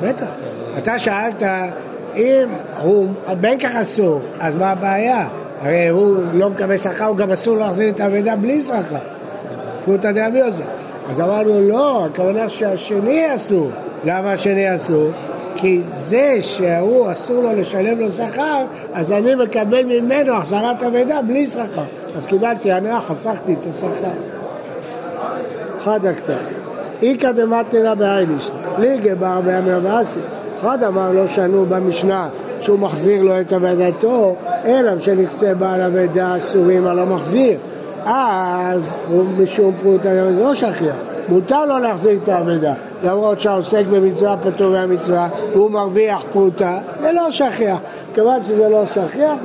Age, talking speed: 60-79, 135 wpm